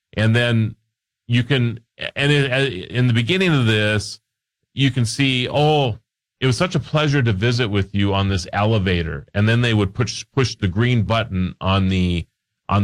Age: 40-59